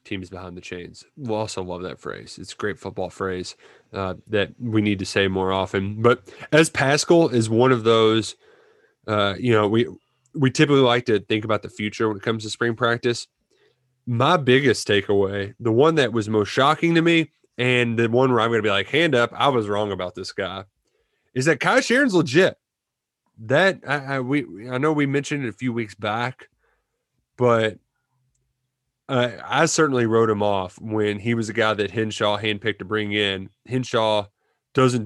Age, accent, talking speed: 20-39, American, 195 wpm